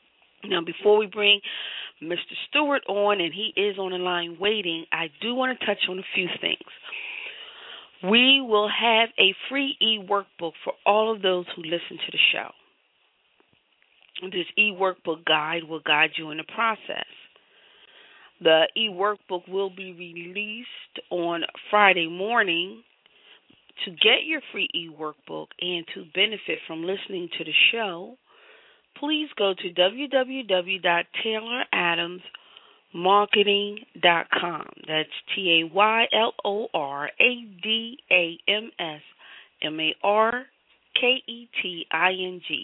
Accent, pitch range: American, 170-220 Hz